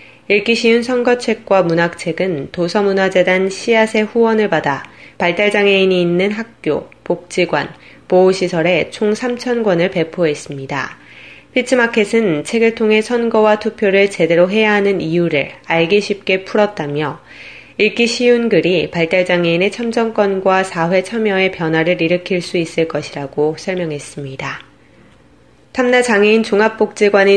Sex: female